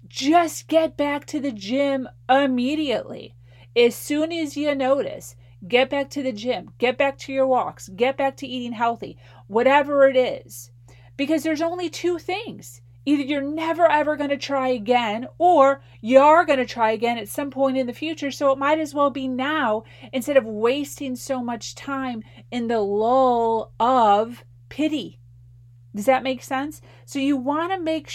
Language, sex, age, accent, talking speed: English, female, 40-59, American, 175 wpm